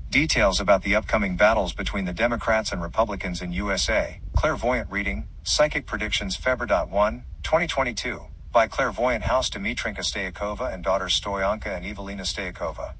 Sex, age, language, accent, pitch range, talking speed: male, 50-69, English, American, 90-115 Hz, 135 wpm